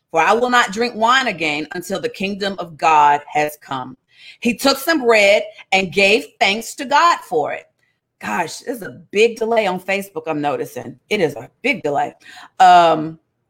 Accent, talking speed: American, 180 wpm